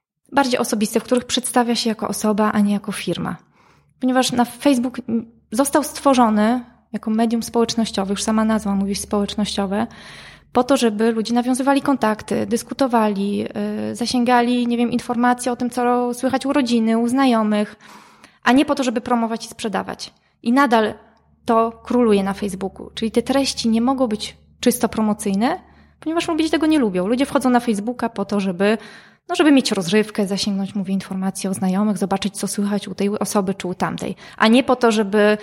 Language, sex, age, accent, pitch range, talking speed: Polish, female, 20-39, native, 200-245 Hz, 170 wpm